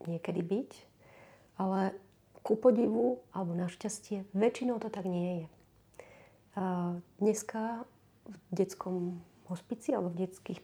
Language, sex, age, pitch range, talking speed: Slovak, female, 30-49, 180-200 Hz, 115 wpm